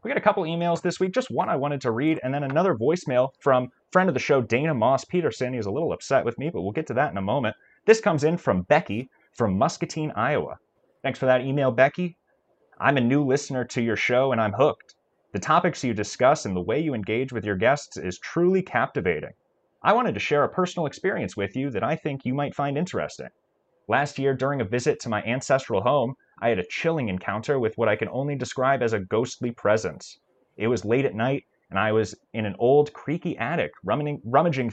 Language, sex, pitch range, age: English, male, 115-150 Hz, 30-49